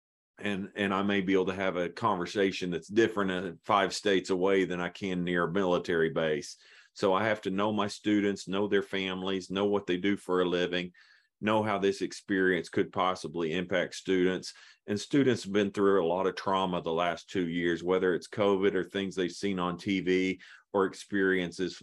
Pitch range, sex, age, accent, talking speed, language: 90-100 Hz, male, 40-59, American, 200 wpm, English